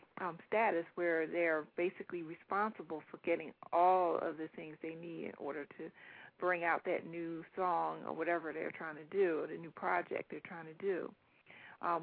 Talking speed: 180 wpm